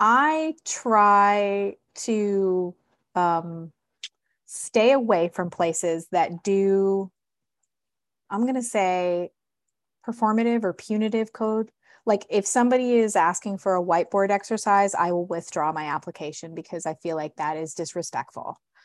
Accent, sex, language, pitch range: American, female, English, 180-220 Hz